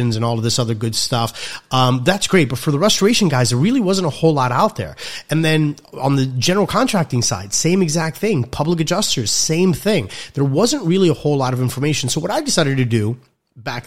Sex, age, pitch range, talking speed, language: male, 30-49, 115-155 Hz, 225 wpm, English